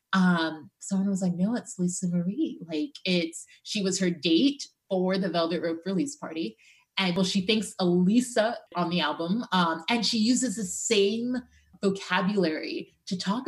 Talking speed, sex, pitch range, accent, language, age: 165 wpm, female, 175-220 Hz, American, English, 20-39